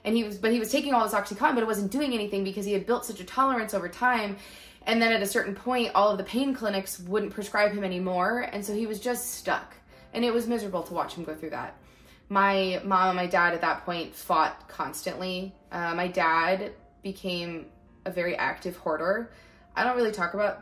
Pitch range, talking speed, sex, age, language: 160-205 Hz, 225 wpm, female, 20-39, English